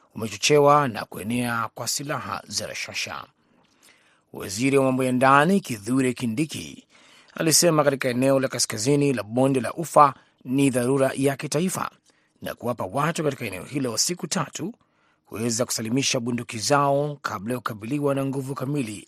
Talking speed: 135 wpm